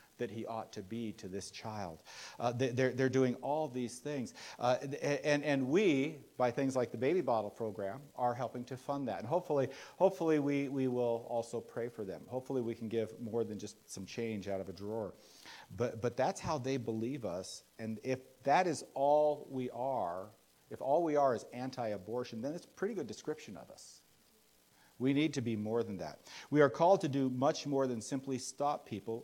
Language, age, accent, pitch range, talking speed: English, 50-69, American, 105-135 Hz, 205 wpm